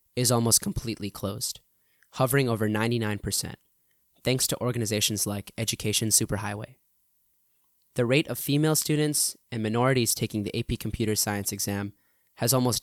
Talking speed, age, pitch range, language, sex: 130 wpm, 10-29, 105-125 Hz, English, male